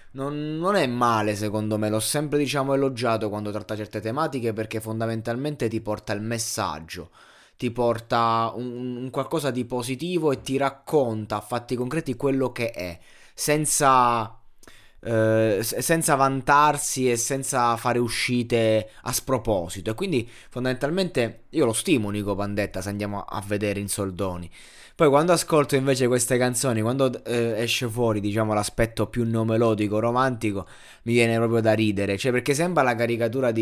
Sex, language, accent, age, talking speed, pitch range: male, Italian, native, 20-39, 155 wpm, 110-130 Hz